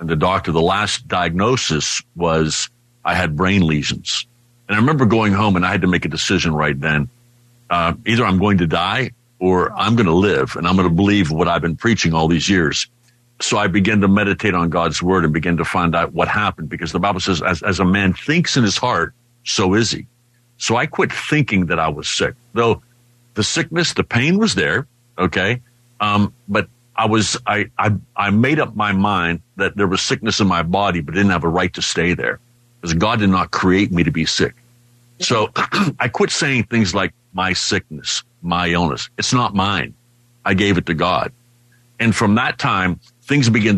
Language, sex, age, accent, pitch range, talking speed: English, male, 60-79, American, 90-120 Hz, 210 wpm